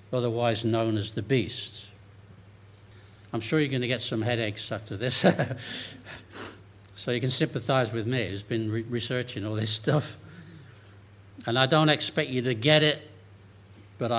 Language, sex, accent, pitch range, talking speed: English, male, British, 105-140 Hz, 150 wpm